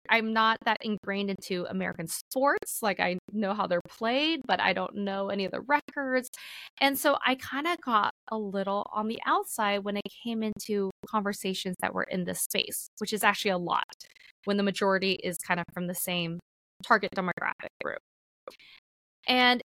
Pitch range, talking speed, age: 190-255 Hz, 185 wpm, 20-39